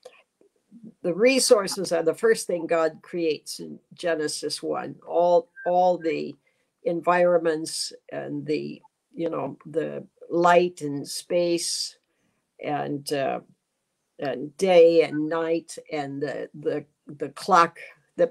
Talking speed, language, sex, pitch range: 115 wpm, English, female, 160-225 Hz